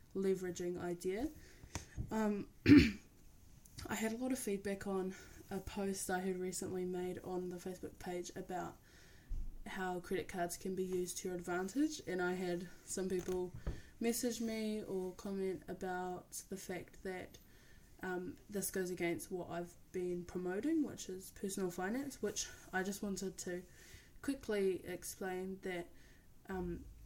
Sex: female